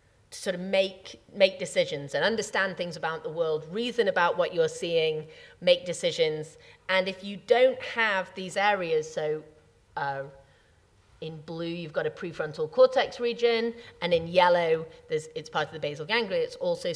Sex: female